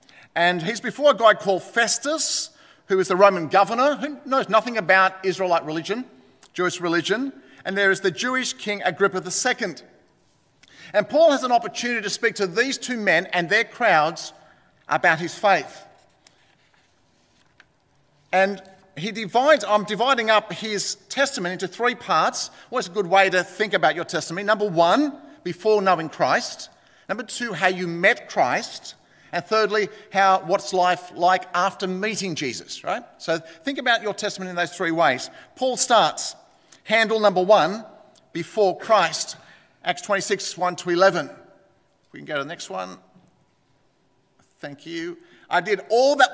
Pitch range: 180-240 Hz